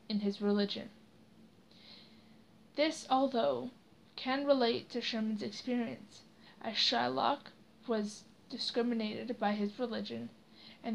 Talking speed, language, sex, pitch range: 100 wpm, English, female, 210-245 Hz